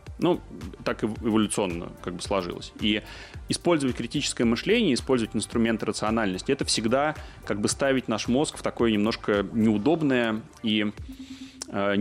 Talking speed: 130 wpm